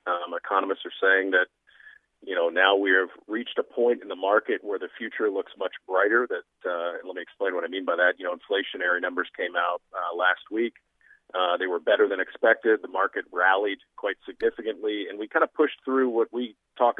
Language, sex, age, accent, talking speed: English, male, 40-59, American, 215 wpm